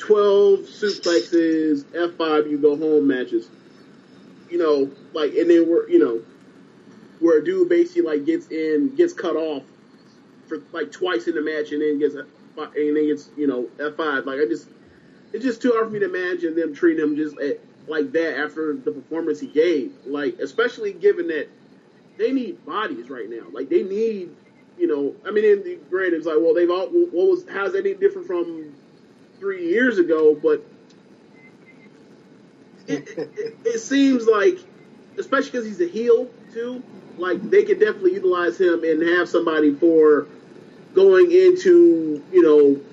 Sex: male